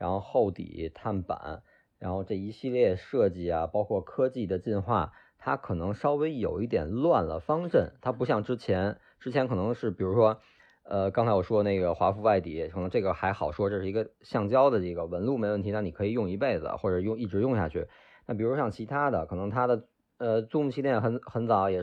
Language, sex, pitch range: Chinese, male, 95-125 Hz